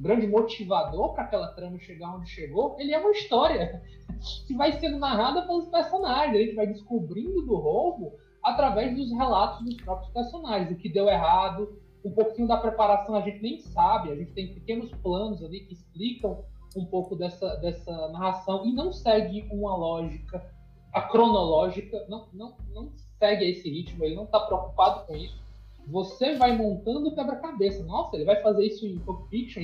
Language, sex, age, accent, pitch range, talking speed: Portuguese, male, 20-39, Brazilian, 185-240 Hz, 170 wpm